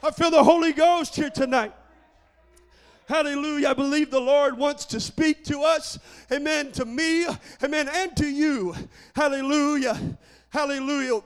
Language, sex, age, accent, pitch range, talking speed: English, male, 40-59, American, 275-360 Hz, 140 wpm